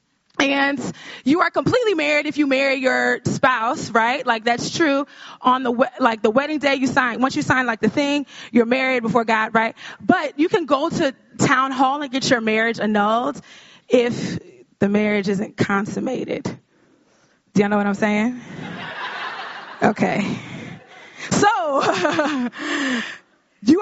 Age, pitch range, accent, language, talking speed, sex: 20-39, 245-310 Hz, American, English, 150 wpm, female